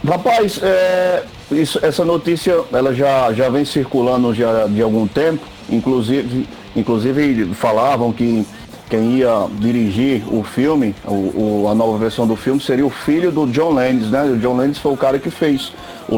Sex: male